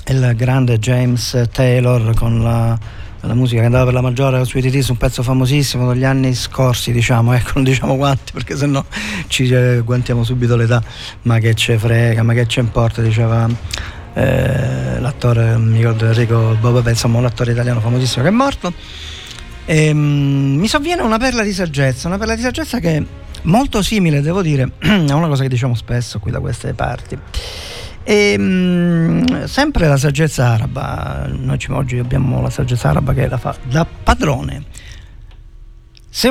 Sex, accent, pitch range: male, native, 115-185 Hz